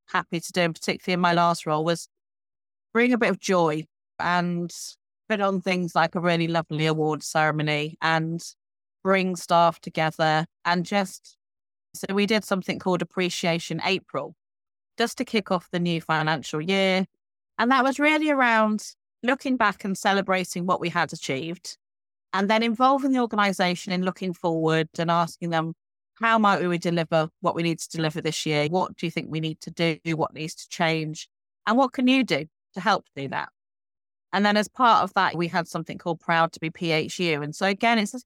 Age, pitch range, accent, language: 30-49, 165-205 Hz, British, English